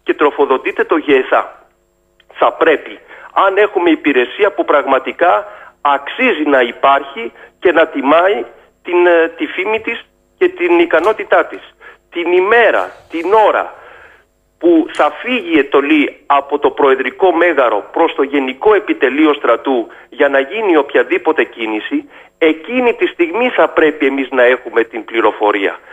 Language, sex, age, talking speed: Greek, male, 40-59, 135 wpm